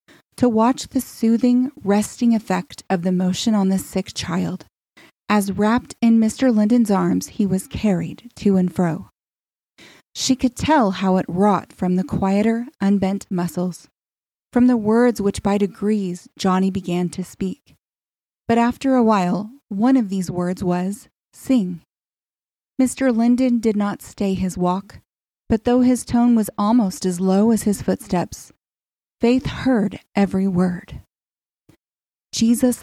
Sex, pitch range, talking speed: female, 185-235 Hz, 145 wpm